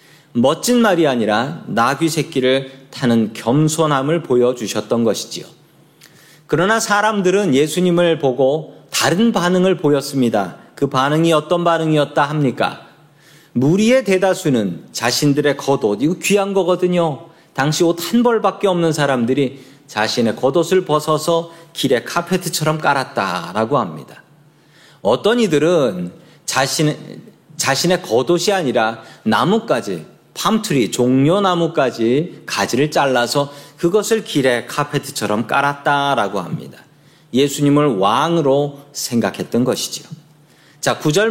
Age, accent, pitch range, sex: 40-59, native, 130-165 Hz, male